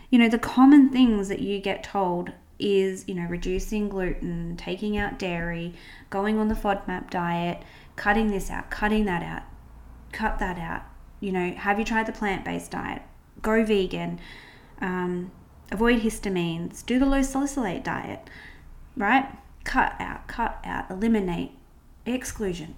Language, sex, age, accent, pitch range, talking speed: English, female, 20-39, Australian, 180-230 Hz, 150 wpm